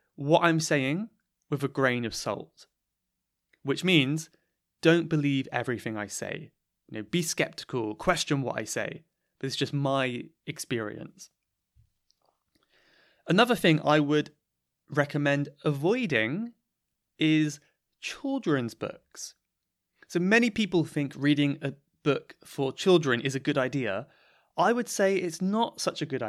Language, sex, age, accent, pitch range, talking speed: English, male, 20-39, British, 130-170 Hz, 130 wpm